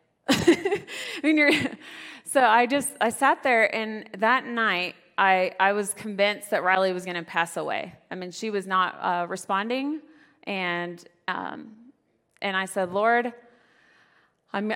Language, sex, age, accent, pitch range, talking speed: English, female, 30-49, American, 185-230 Hz, 150 wpm